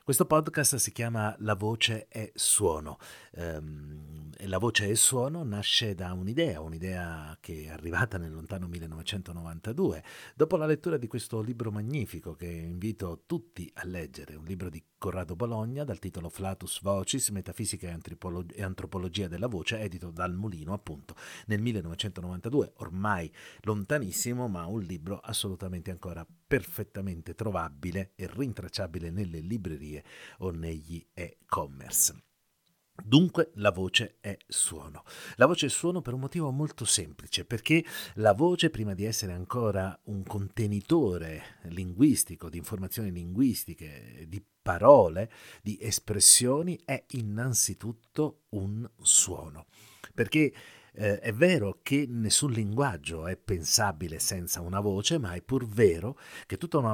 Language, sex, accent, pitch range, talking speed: Italian, male, native, 90-120 Hz, 130 wpm